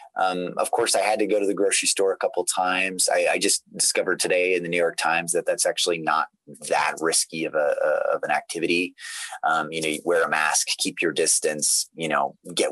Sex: male